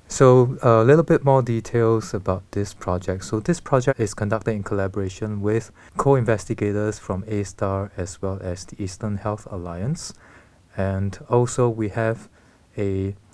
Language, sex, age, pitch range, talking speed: English, male, 20-39, 95-115 Hz, 145 wpm